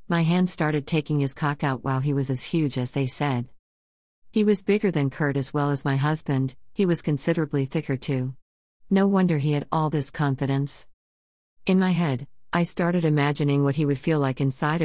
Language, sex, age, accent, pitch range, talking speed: English, female, 40-59, American, 135-155 Hz, 200 wpm